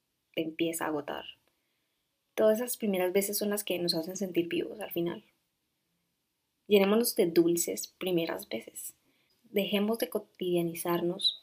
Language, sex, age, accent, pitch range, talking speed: Spanish, female, 20-39, Colombian, 175-200 Hz, 130 wpm